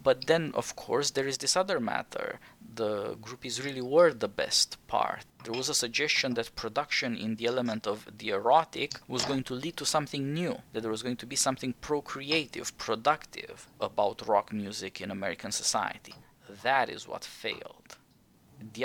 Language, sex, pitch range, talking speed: English, male, 115-165 Hz, 175 wpm